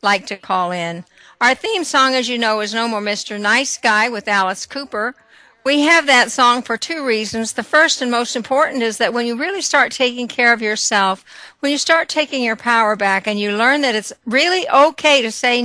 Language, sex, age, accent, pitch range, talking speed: English, female, 60-79, American, 195-245 Hz, 220 wpm